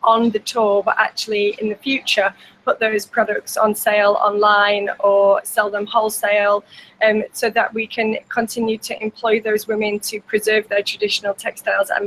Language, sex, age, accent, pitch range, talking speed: English, female, 10-29, British, 215-250 Hz, 170 wpm